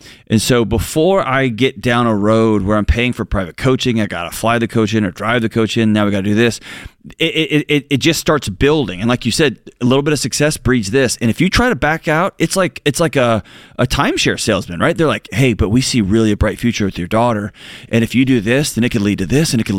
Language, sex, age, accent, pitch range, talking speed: English, male, 30-49, American, 110-145 Hz, 275 wpm